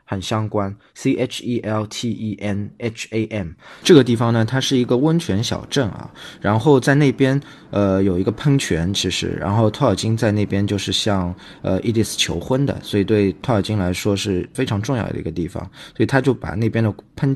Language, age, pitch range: Chinese, 20-39, 95-115 Hz